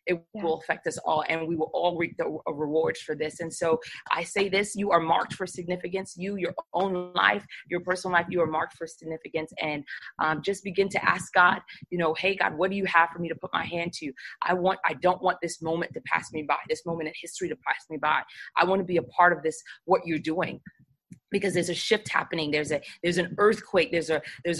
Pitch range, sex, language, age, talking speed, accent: 160-185 Hz, female, English, 30-49, 245 wpm, American